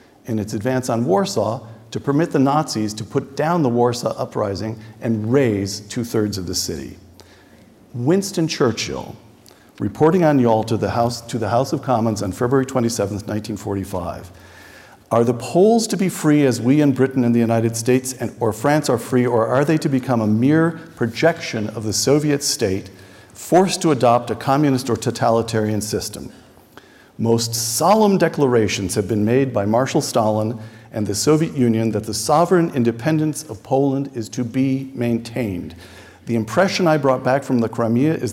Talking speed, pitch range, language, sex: 170 wpm, 110-140 Hz, English, male